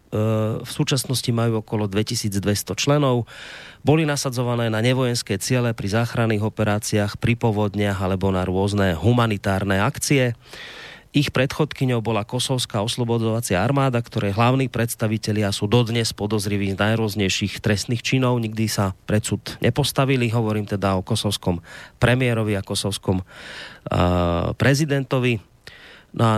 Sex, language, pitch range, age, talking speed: male, Slovak, 105-125 Hz, 30-49, 115 wpm